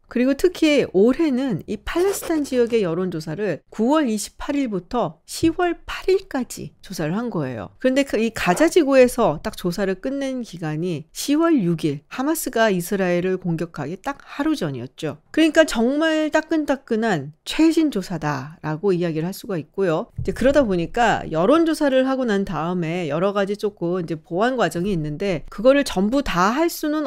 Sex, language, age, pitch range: female, Korean, 40-59, 180-265 Hz